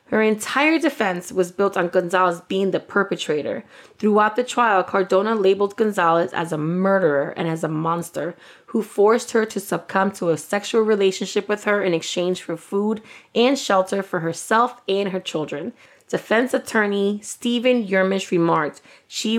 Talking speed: 160 wpm